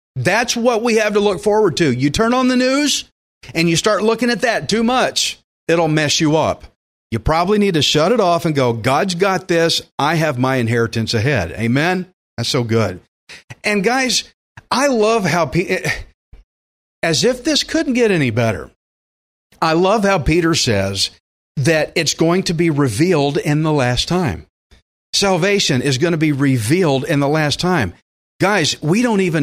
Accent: American